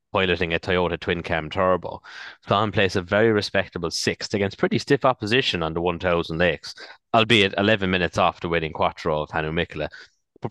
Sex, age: male, 30-49